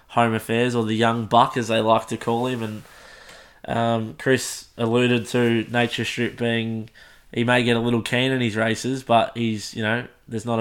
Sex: male